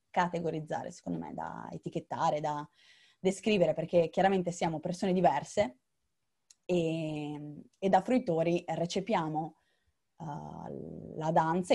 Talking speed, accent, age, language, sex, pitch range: 95 wpm, native, 20-39, Italian, female, 155-185 Hz